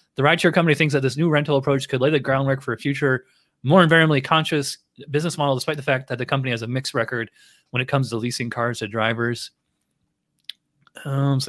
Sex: male